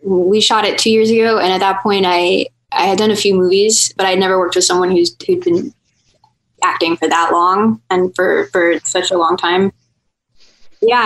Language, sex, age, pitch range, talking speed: English, female, 10-29, 190-245 Hz, 210 wpm